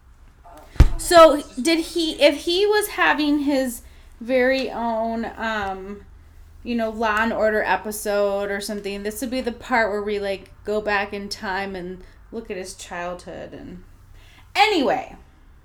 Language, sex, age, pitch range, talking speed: English, female, 30-49, 190-270 Hz, 145 wpm